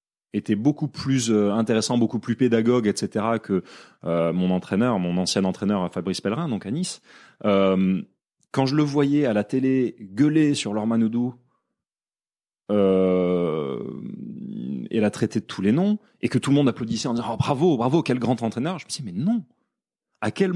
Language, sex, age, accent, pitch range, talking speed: French, male, 30-49, French, 105-155 Hz, 185 wpm